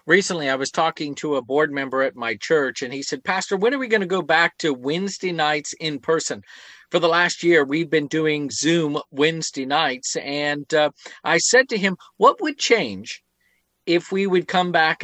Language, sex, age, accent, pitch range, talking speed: English, male, 50-69, American, 145-180 Hz, 205 wpm